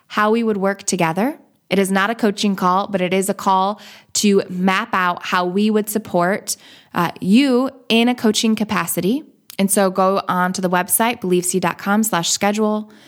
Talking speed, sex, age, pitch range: 170 wpm, female, 20-39, 185-235 Hz